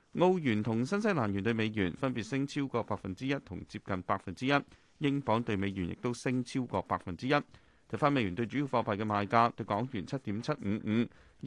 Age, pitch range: 30-49, 105-145 Hz